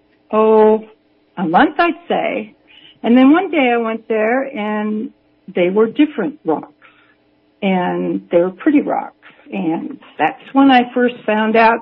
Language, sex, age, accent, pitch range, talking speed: English, female, 60-79, American, 180-230 Hz, 145 wpm